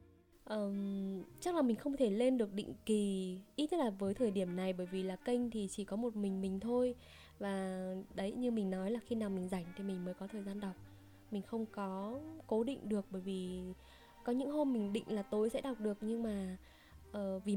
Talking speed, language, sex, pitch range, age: 220 wpm, Vietnamese, female, 195-240 Hz, 10-29